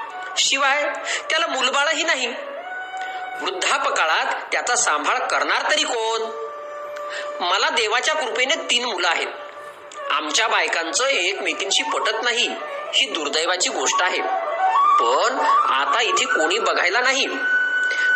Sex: male